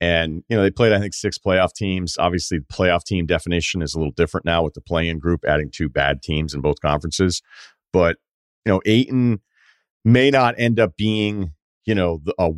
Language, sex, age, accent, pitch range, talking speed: English, male, 40-59, American, 90-115 Hz, 210 wpm